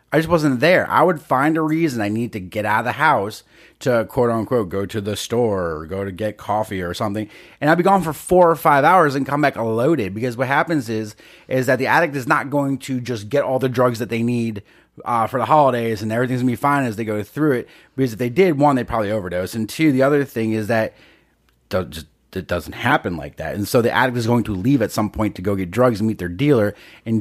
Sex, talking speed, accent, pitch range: male, 265 wpm, American, 105-135 Hz